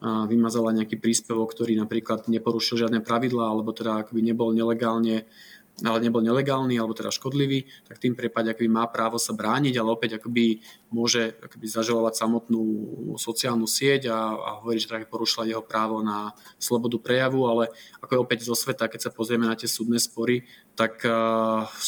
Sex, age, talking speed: male, 20-39, 165 wpm